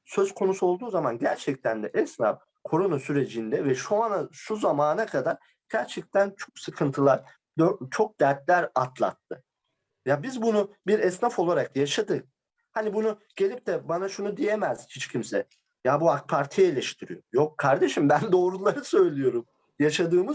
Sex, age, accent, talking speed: male, 50-69, native, 140 wpm